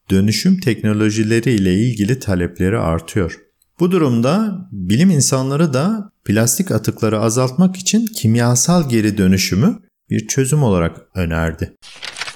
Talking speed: 100 wpm